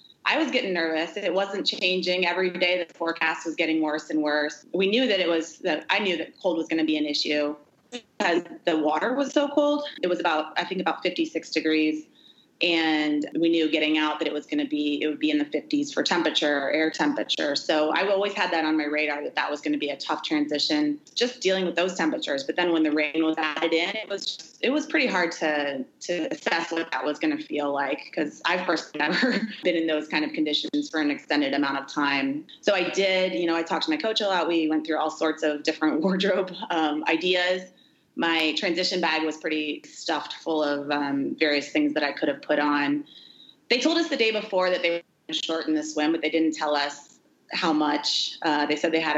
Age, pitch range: 20-39, 150-190 Hz